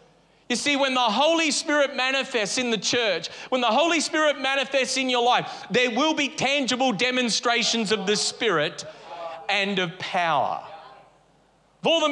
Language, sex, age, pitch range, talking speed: English, male, 40-59, 210-275 Hz, 160 wpm